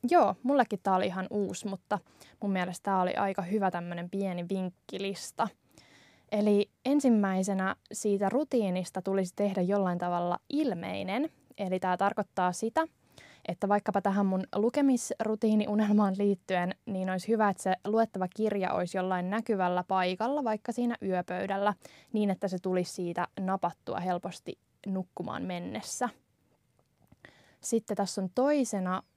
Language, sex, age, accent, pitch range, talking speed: Finnish, female, 20-39, native, 185-225 Hz, 130 wpm